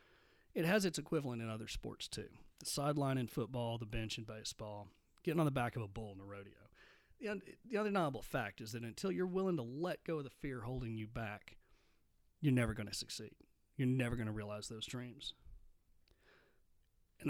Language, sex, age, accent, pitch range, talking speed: English, male, 30-49, American, 110-135 Hz, 200 wpm